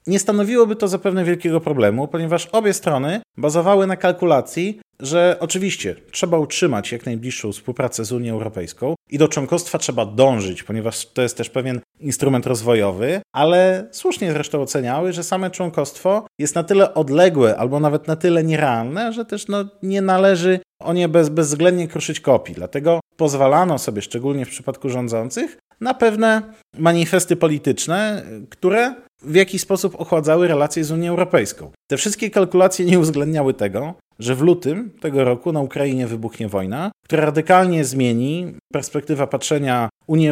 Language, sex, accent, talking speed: Polish, male, native, 150 wpm